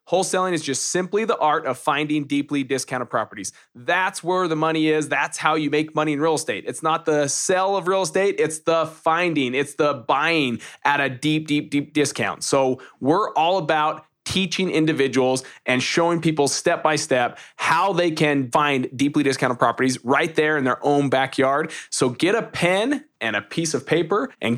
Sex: male